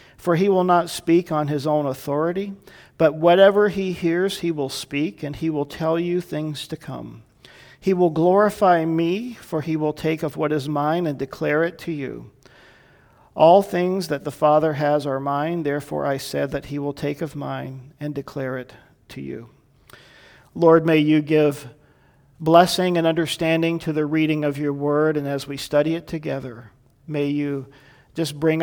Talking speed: 180 wpm